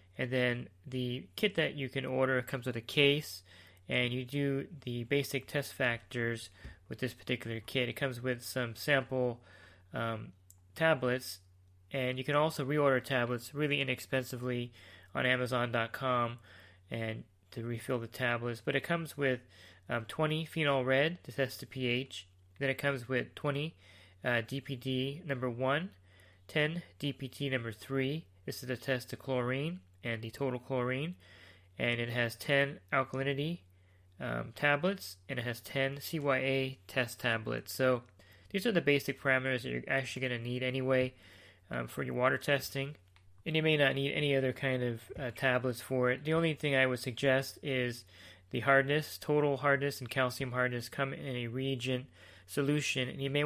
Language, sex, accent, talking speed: English, male, American, 165 wpm